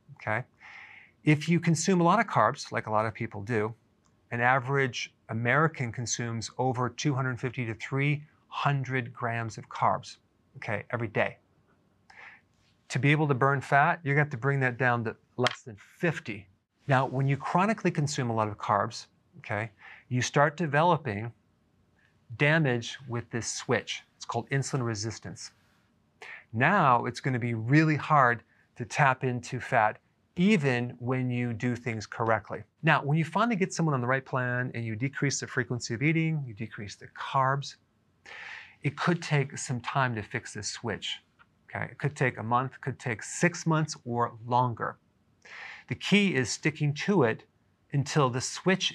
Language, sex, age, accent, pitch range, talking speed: English, male, 40-59, American, 115-145 Hz, 165 wpm